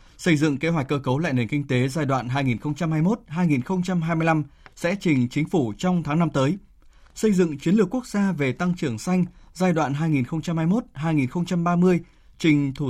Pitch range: 140-180 Hz